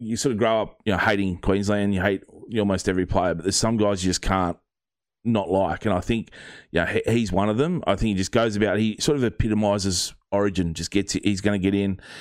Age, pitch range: 30-49, 90-105 Hz